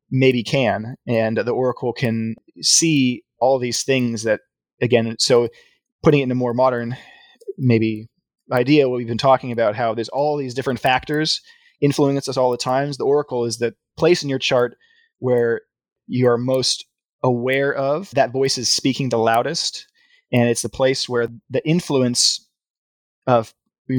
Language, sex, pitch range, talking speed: English, male, 120-140 Hz, 165 wpm